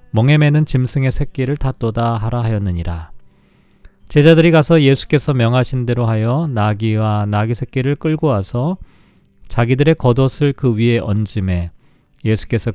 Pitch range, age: 110-145 Hz, 40-59